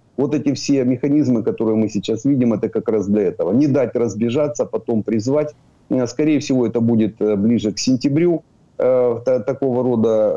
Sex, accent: male, native